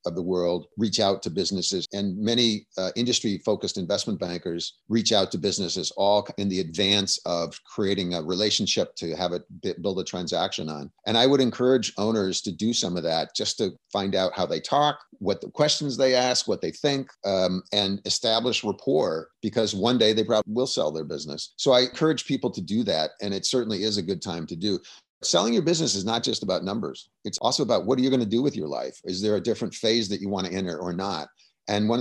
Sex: male